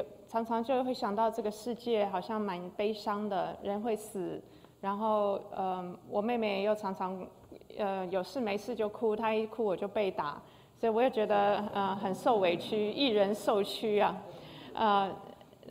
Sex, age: female, 20-39